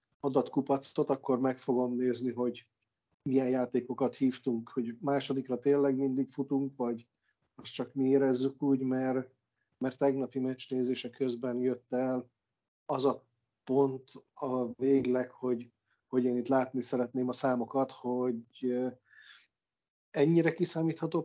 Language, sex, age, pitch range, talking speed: Hungarian, male, 50-69, 125-140 Hz, 120 wpm